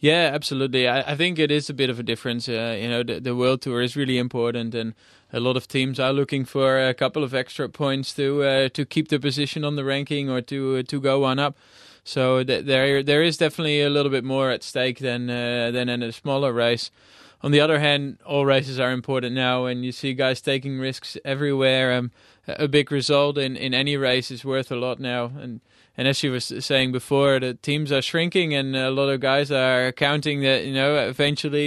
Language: English